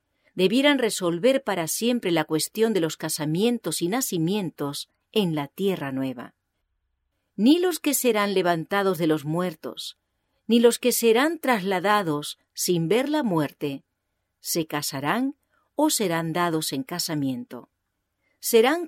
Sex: female